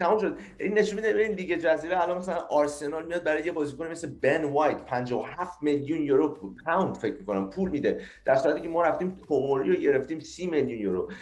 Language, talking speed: Persian, 215 wpm